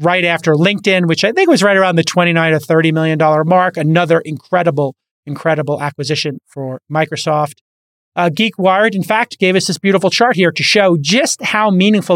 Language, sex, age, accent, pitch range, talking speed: English, male, 30-49, American, 155-180 Hz, 190 wpm